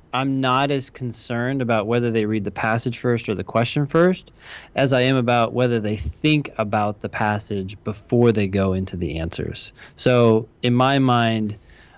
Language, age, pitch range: English, 20-39, 105-120 Hz